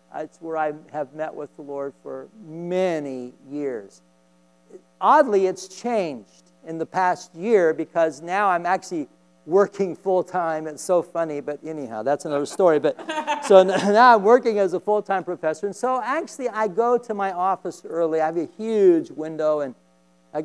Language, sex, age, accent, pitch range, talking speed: English, male, 50-69, American, 140-210 Hz, 165 wpm